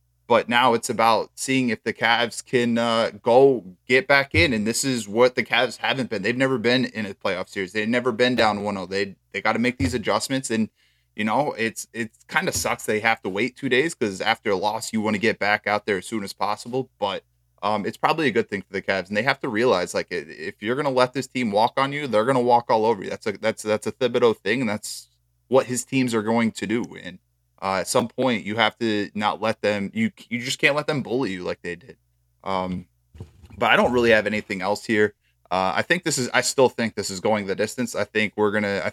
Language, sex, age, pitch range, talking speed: English, male, 20-39, 100-125 Hz, 260 wpm